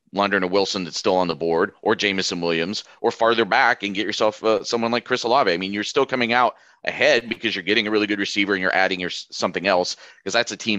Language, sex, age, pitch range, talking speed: English, male, 30-49, 95-115 Hz, 255 wpm